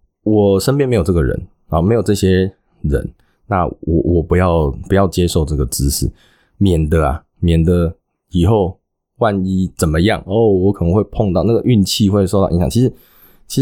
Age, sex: 20-39, male